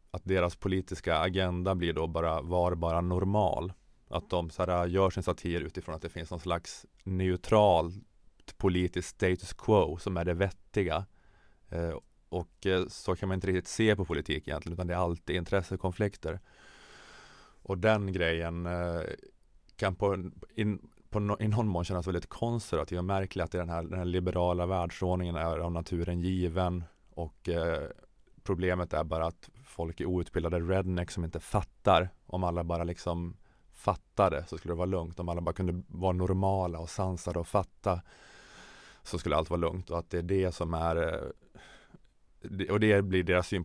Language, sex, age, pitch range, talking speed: Swedish, male, 30-49, 85-95 Hz, 165 wpm